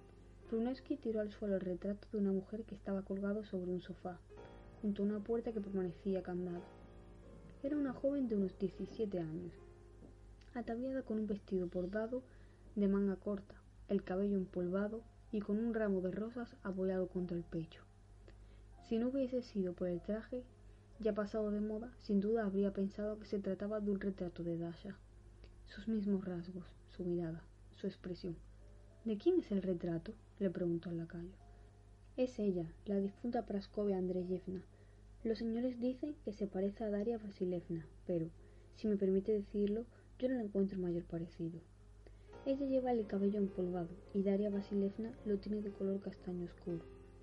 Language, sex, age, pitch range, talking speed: Spanish, female, 20-39, 170-215 Hz, 165 wpm